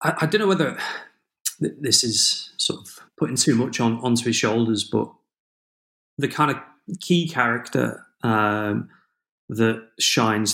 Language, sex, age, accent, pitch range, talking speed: English, male, 30-49, British, 105-125 Hz, 130 wpm